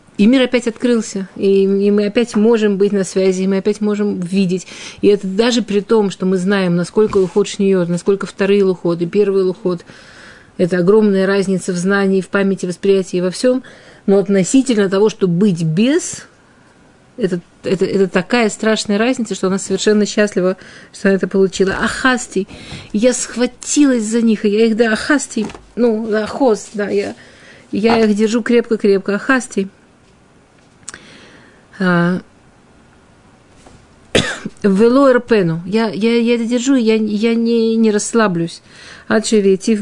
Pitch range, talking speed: 185-220 Hz, 150 wpm